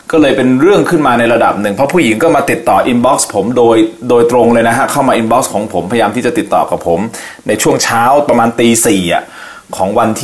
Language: Thai